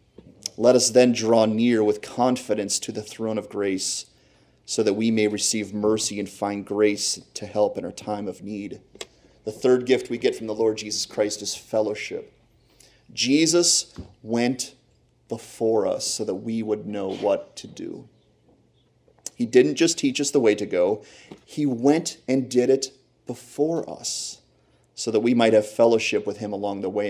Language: English